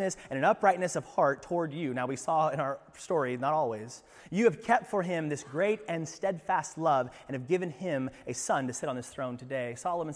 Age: 30-49